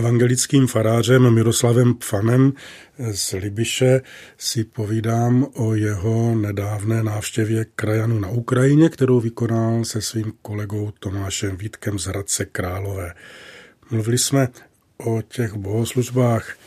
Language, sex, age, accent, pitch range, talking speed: Czech, male, 40-59, native, 110-125 Hz, 110 wpm